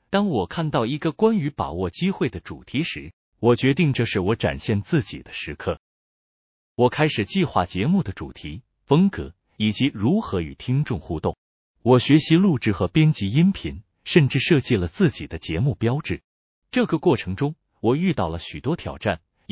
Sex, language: male, Chinese